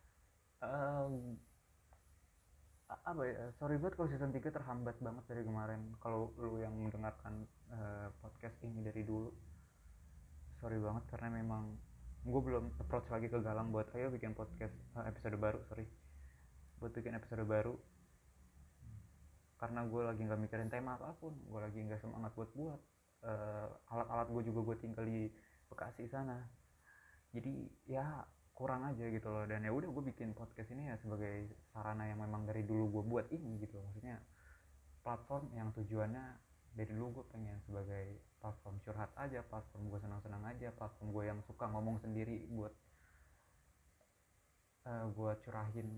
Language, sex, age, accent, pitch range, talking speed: Indonesian, male, 20-39, native, 105-120 Hz, 150 wpm